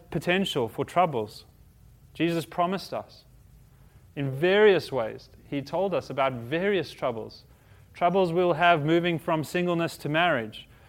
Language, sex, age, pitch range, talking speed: English, male, 30-49, 120-170 Hz, 125 wpm